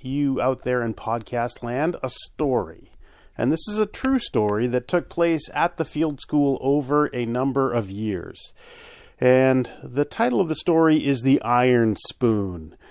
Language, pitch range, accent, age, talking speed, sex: English, 120-155 Hz, American, 40-59, 165 wpm, male